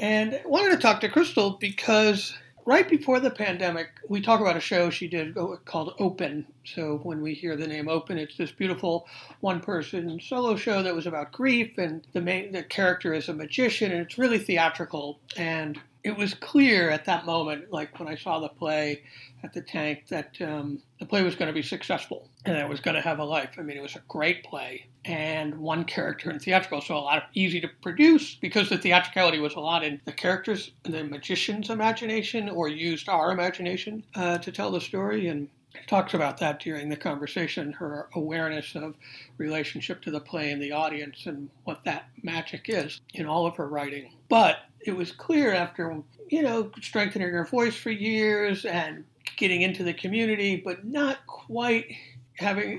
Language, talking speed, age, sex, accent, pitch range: English, 195 wpm, 60-79, male, American, 155-205 Hz